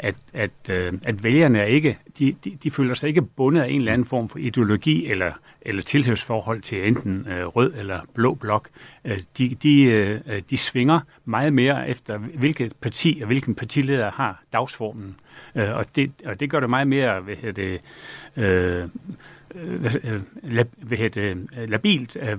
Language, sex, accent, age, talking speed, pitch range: Danish, male, native, 60-79, 150 wpm, 110-140 Hz